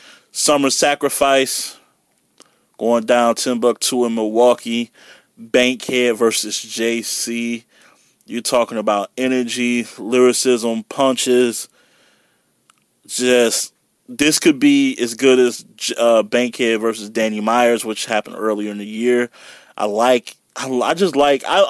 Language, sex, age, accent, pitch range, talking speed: English, male, 20-39, American, 115-125 Hz, 110 wpm